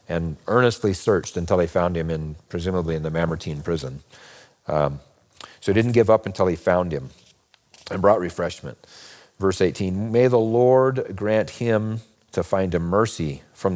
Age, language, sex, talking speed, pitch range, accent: 40-59, English, male, 165 wpm, 80-100 Hz, American